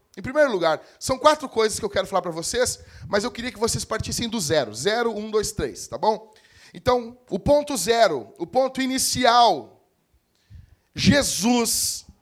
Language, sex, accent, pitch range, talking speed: Portuguese, male, Brazilian, 215-280 Hz, 165 wpm